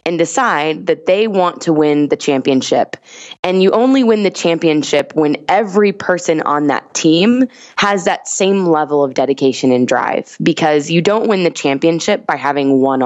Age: 20-39